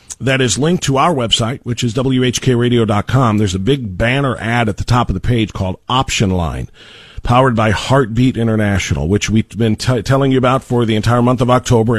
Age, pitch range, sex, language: 50-69, 115-140 Hz, male, English